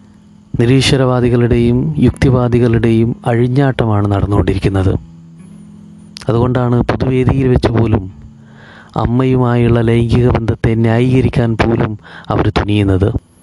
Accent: native